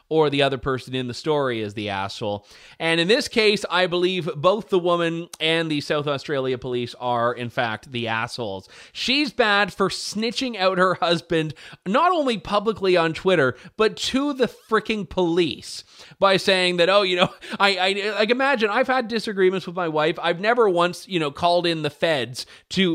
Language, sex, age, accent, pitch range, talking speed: English, male, 30-49, American, 130-185 Hz, 190 wpm